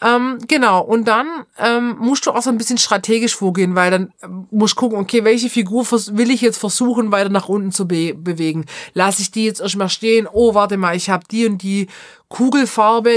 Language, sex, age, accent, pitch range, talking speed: German, female, 30-49, German, 185-230 Hz, 220 wpm